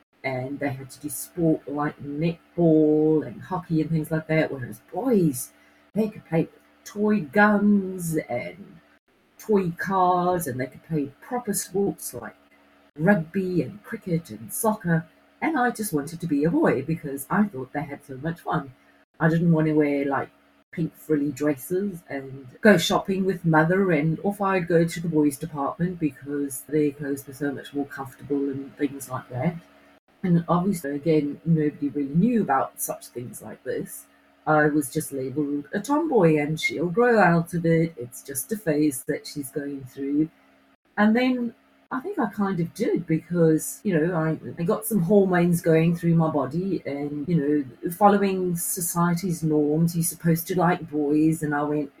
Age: 40-59